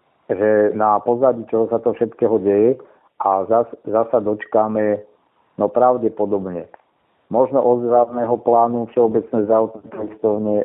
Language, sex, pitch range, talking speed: Slovak, male, 100-115 Hz, 105 wpm